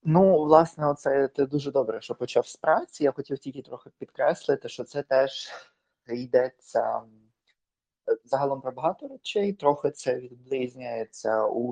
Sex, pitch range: male, 125-175 Hz